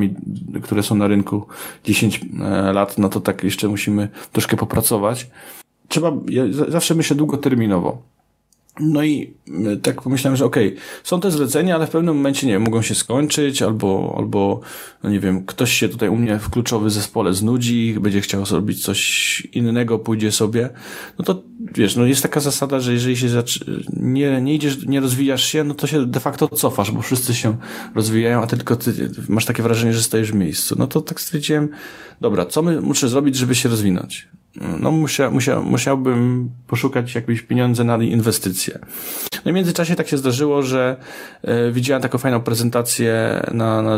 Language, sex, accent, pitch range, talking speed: Polish, male, native, 110-140 Hz, 175 wpm